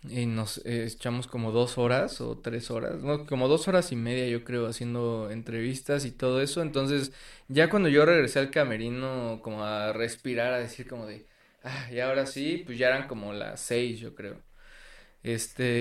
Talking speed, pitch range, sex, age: 190 wpm, 110-130 Hz, male, 20-39